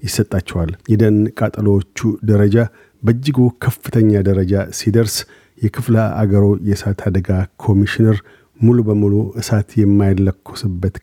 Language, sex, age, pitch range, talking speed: Amharic, male, 50-69, 100-110 Hz, 90 wpm